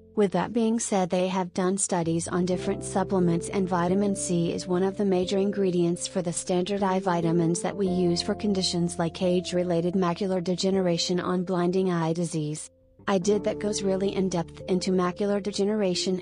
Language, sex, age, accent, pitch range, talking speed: English, female, 30-49, American, 175-195 Hz, 175 wpm